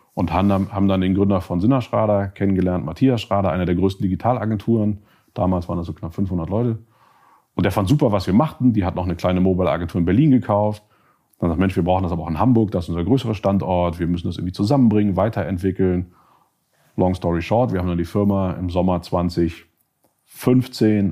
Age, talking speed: 30-49, 195 wpm